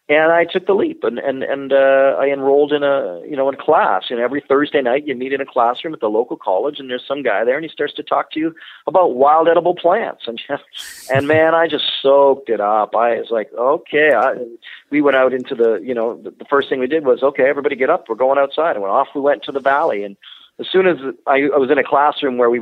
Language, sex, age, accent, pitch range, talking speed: English, male, 40-59, American, 115-150 Hz, 265 wpm